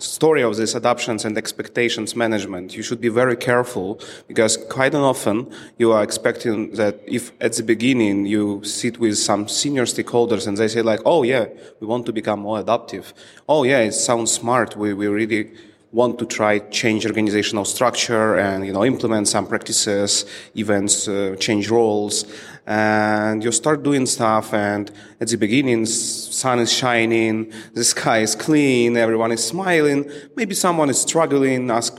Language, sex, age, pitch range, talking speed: English, male, 30-49, 110-135 Hz, 165 wpm